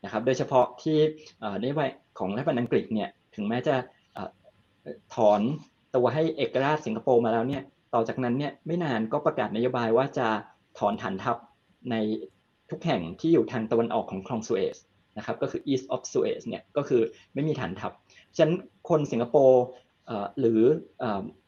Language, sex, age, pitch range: Thai, male, 20-39, 115-155 Hz